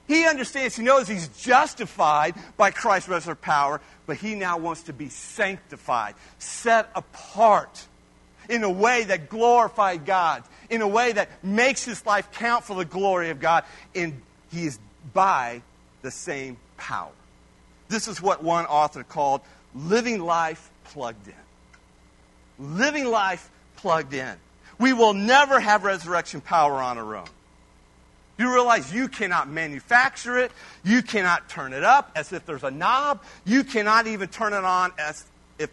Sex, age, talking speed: male, 50-69, 155 wpm